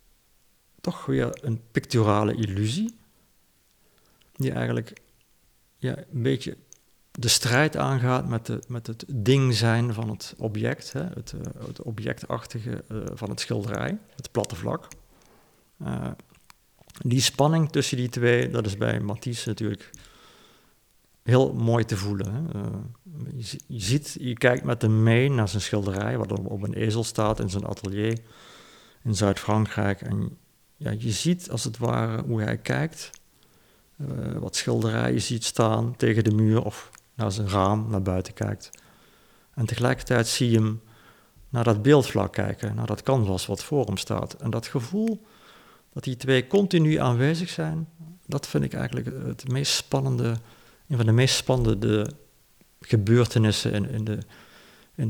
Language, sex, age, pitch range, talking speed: Dutch, male, 50-69, 105-130 Hz, 145 wpm